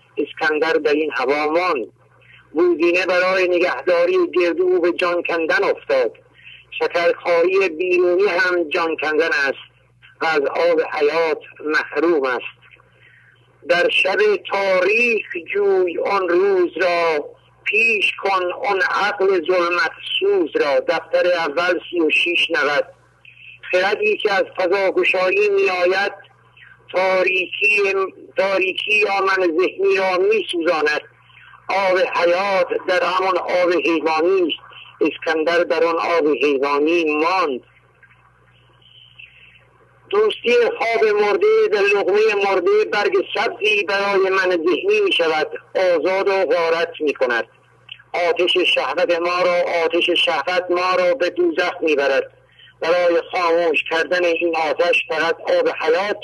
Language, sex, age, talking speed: English, male, 50-69, 110 wpm